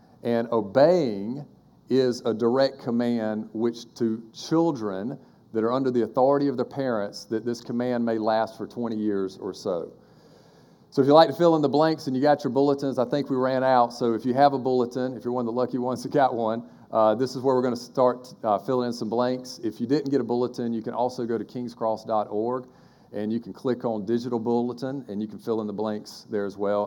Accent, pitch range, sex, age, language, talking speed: American, 110-130 Hz, male, 40-59, English, 230 wpm